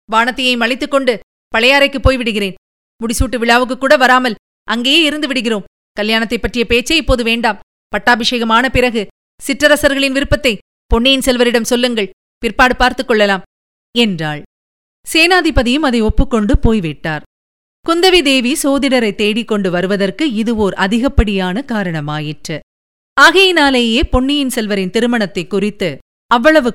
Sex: female